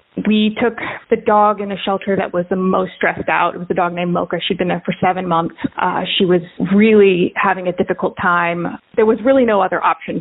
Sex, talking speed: female, 230 wpm